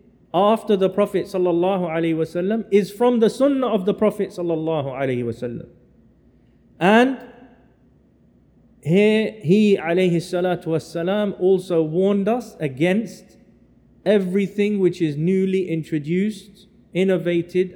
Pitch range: 160-205 Hz